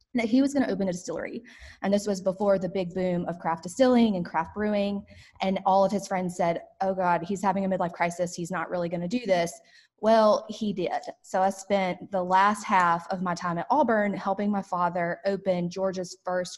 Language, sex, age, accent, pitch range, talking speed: English, female, 20-39, American, 175-200 Hz, 220 wpm